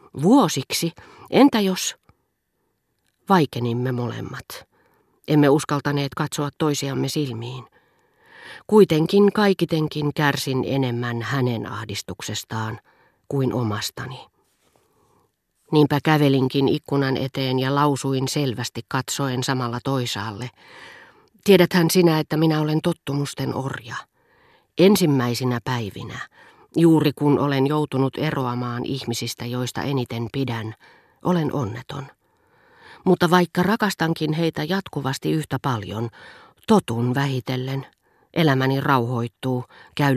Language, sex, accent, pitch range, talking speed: Finnish, female, native, 125-165 Hz, 90 wpm